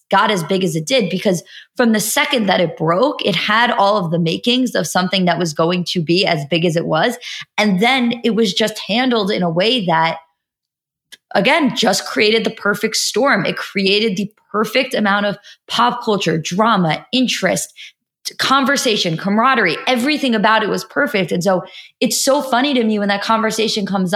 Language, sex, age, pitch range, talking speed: English, female, 20-39, 185-240 Hz, 185 wpm